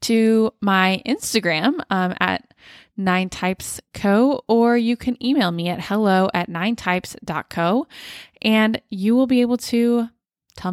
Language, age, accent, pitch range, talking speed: English, 20-39, American, 185-240 Hz, 135 wpm